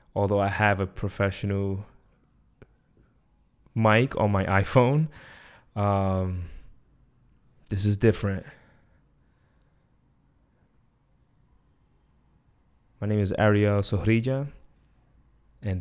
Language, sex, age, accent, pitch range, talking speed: English, male, 20-39, American, 100-120 Hz, 70 wpm